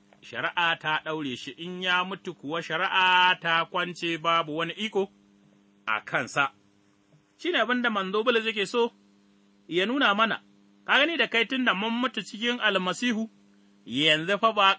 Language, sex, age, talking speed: English, male, 30-49, 135 wpm